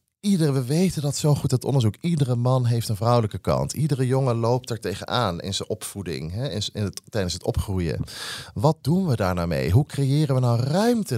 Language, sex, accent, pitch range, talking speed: Dutch, male, Dutch, 110-145 Hz, 210 wpm